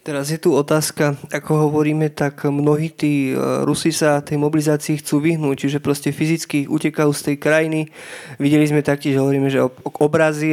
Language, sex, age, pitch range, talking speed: Slovak, male, 20-39, 145-160 Hz, 165 wpm